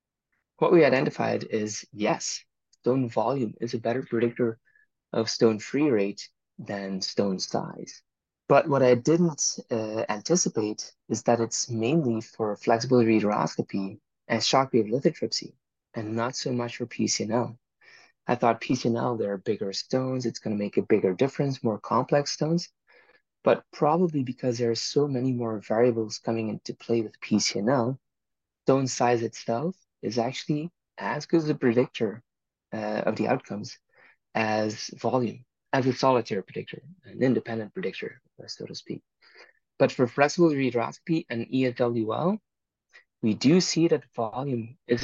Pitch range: 110-135 Hz